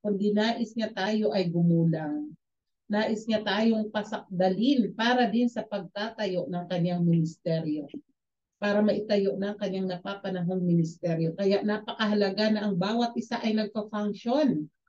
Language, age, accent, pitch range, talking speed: Filipino, 50-69, native, 190-230 Hz, 125 wpm